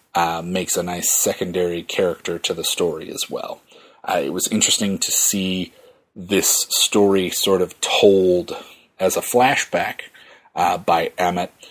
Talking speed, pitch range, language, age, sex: 145 wpm, 90-105 Hz, English, 30-49, male